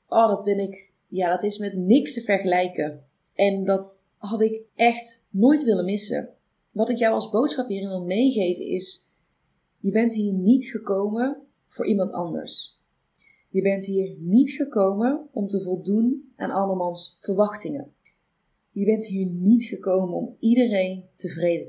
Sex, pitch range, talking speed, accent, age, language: female, 180-230 Hz, 150 wpm, Dutch, 30-49, Dutch